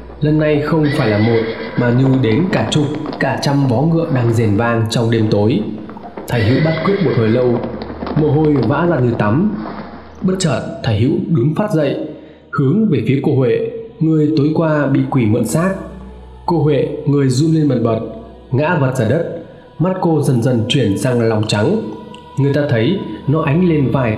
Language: Vietnamese